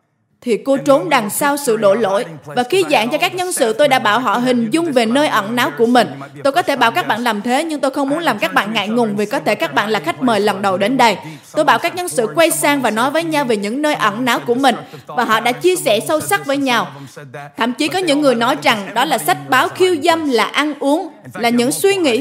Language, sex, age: Vietnamese, female, 20-39